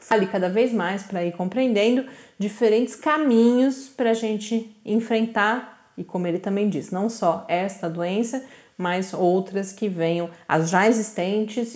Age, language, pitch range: 30-49, Portuguese, 180-225 Hz